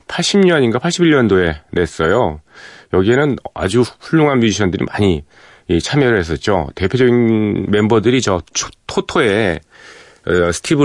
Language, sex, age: Korean, male, 40-59